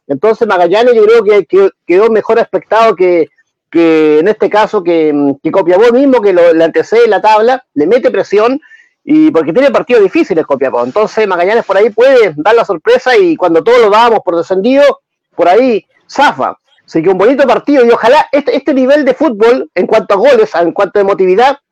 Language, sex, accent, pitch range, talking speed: Spanish, male, Argentinian, 195-315 Hz, 190 wpm